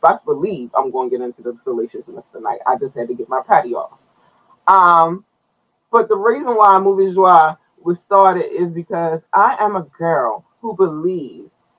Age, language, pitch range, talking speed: 20-39, English, 135-190 Hz, 180 wpm